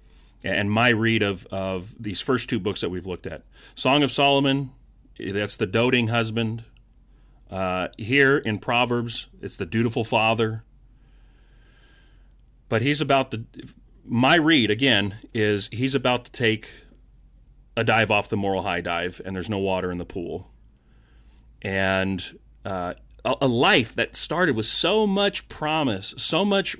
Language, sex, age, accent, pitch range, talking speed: English, male, 30-49, American, 105-145 Hz, 150 wpm